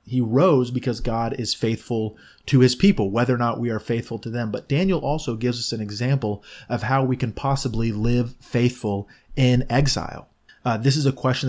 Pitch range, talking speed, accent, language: 110-130 Hz, 200 wpm, American, English